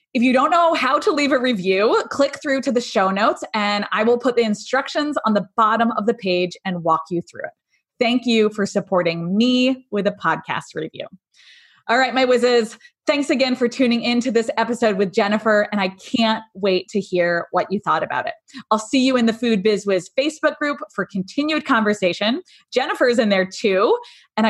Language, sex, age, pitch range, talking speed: English, female, 20-39, 180-250 Hz, 205 wpm